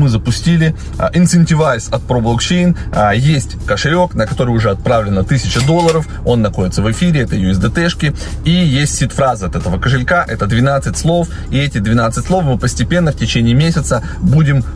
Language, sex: Russian, male